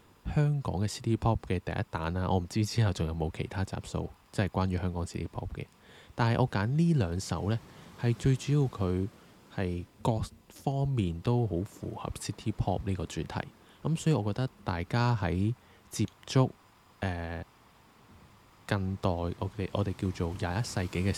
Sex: male